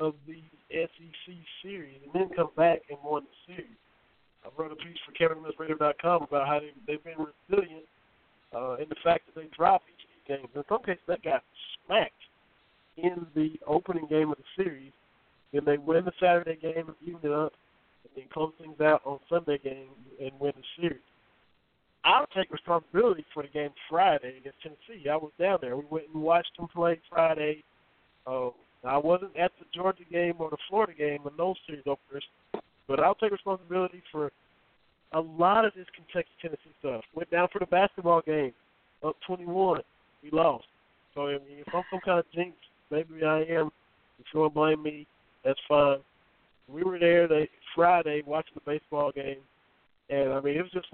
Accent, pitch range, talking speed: American, 145-175 Hz, 185 wpm